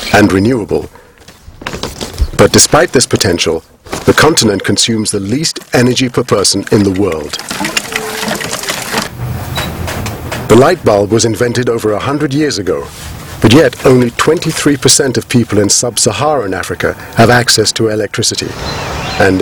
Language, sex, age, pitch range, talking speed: English, male, 50-69, 105-130 Hz, 130 wpm